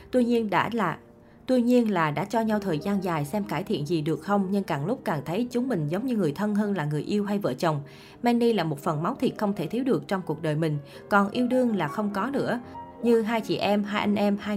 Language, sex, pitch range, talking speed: Vietnamese, female, 175-235 Hz, 270 wpm